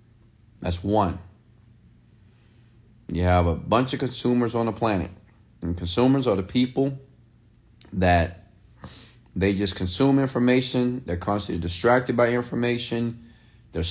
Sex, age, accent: male, 30-49, American